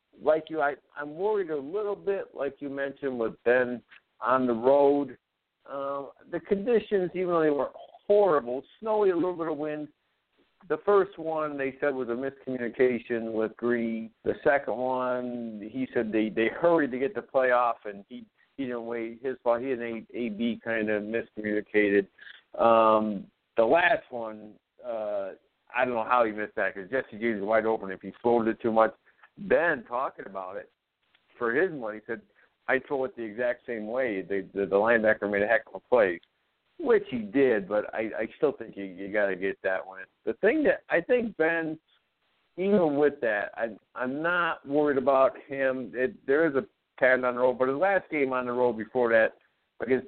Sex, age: male, 50-69